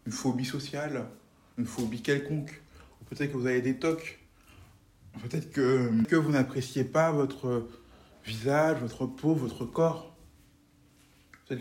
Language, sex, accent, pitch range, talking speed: French, male, French, 115-155 Hz, 130 wpm